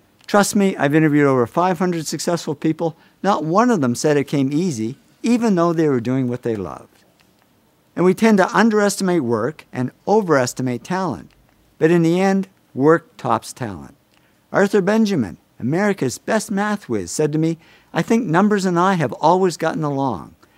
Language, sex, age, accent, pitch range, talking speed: English, male, 50-69, American, 135-195 Hz, 170 wpm